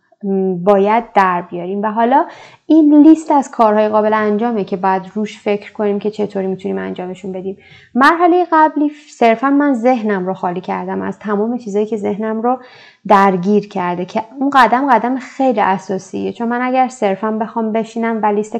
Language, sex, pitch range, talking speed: Persian, female, 195-250 Hz, 165 wpm